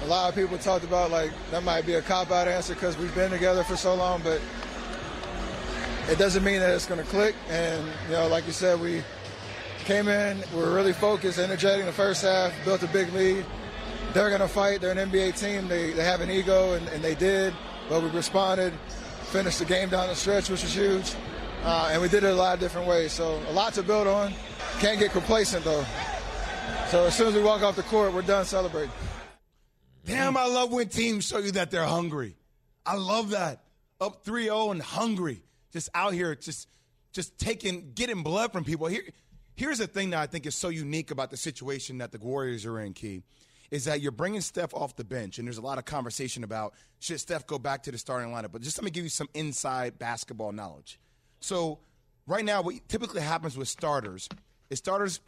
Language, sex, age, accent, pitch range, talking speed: English, male, 20-39, American, 145-195 Hz, 220 wpm